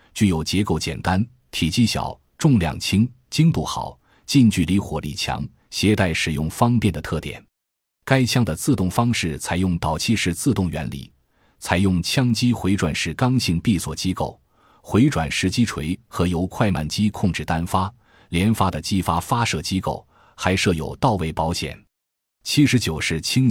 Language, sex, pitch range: Chinese, male, 80-110 Hz